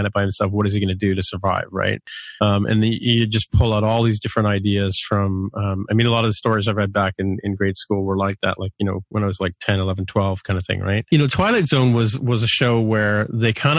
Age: 40-59